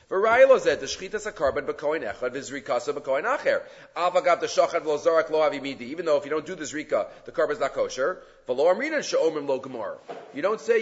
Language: English